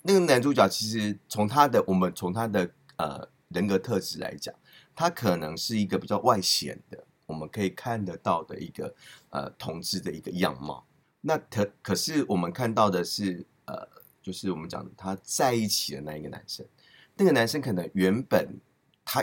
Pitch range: 90-140 Hz